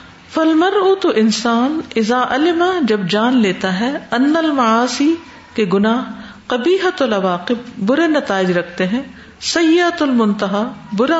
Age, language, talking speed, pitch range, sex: 50-69, Urdu, 120 wpm, 175-230 Hz, female